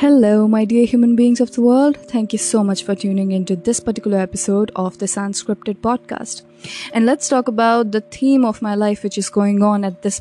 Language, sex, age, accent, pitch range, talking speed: English, female, 20-39, Indian, 215-310 Hz, 225 wpm